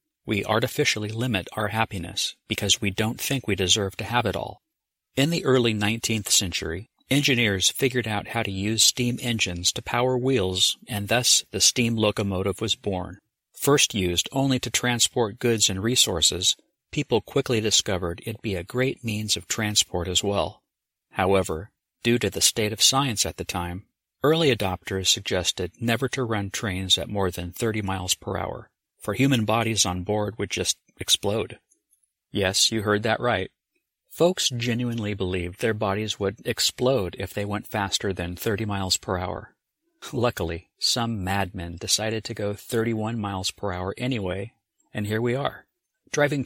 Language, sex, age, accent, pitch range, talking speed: English, male, 50-69, American, 95-120 Hz, 165 wpm